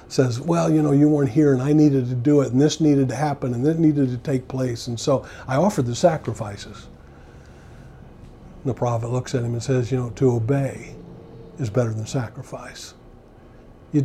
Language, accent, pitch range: English, American, 120-150 Hz